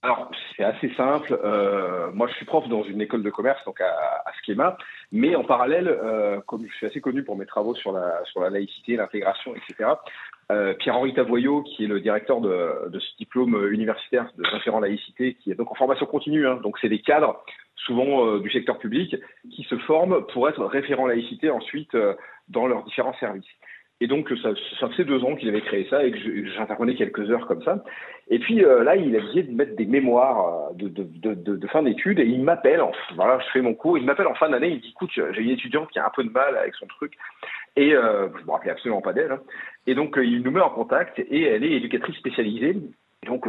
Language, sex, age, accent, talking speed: French, male, 40-59, French, 240 wpm